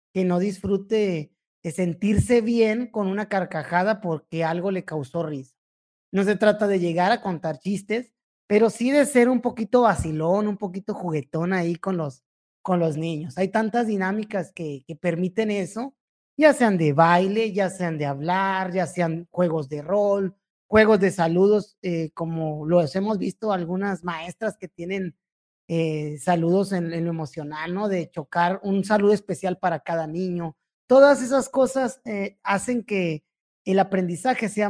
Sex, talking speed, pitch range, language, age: male, 165 wpm, 170-210 Hz, Spanish, 30-49